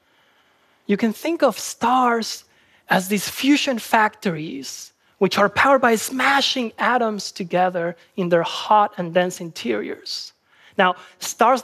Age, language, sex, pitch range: 30-49, Korean, male, 200-265 Hz